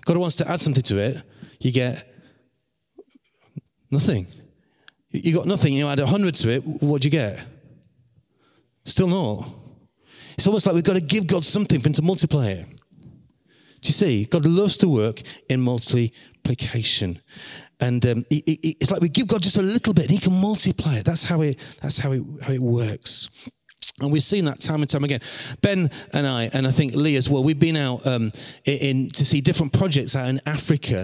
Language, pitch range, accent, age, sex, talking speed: English, 130-170 Hz, British, 30-49, male, 205 wpm